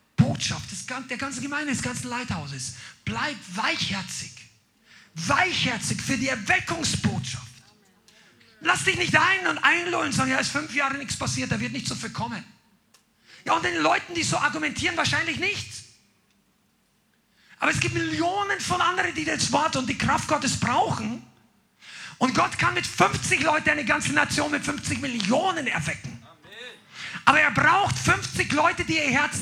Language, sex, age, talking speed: German, male, 40-59, 160 wpm